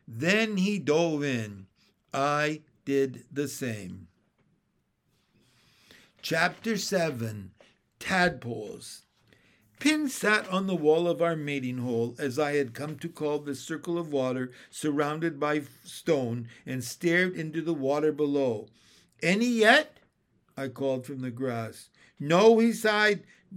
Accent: American